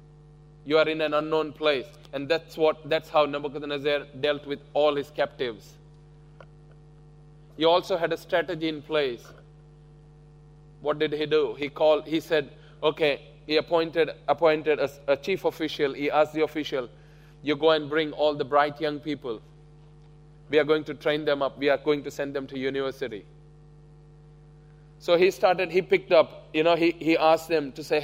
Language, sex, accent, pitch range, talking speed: English, male, Indian, 150-155 Hz, 175 wpm